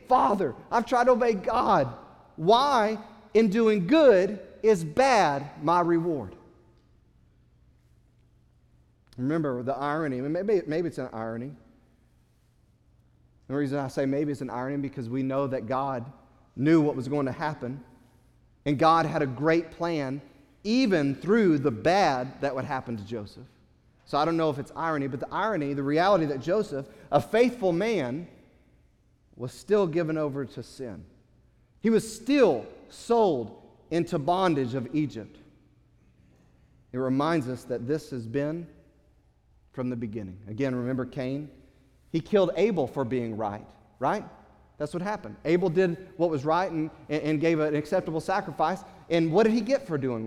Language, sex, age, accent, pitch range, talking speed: English, male, 40-59, American, 125-170 Hz, 155 wpm